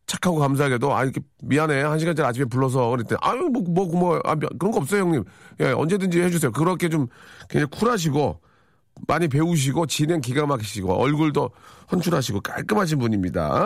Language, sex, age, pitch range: Korean, male, 40-59, 120-180 Hz